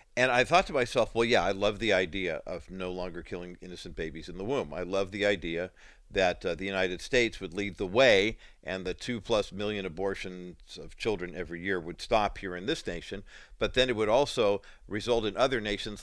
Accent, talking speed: American, 215 wpm